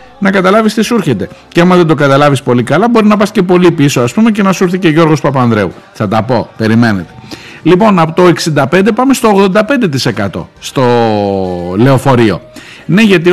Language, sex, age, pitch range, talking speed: Greek, male, 50-69, 135-195 Hz, 190 wpm